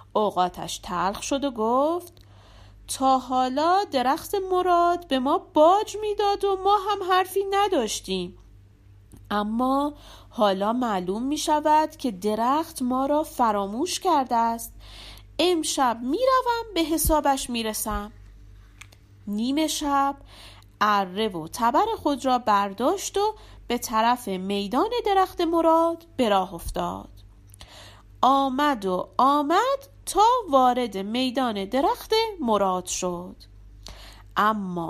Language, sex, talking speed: Persian, female, 105 wpm